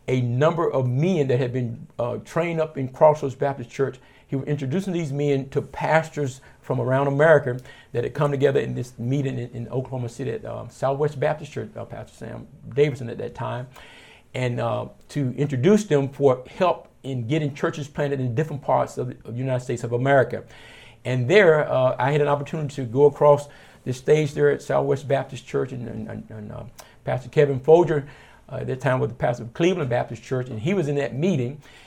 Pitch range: 125-150 Hz